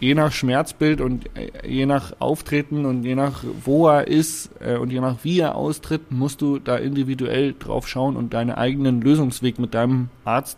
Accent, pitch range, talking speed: German, 120-140 Hz, 180 wpm